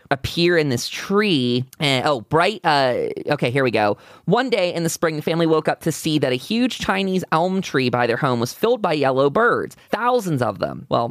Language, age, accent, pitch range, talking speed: English, 20-39, American, 130-180 Hz, 220 wpm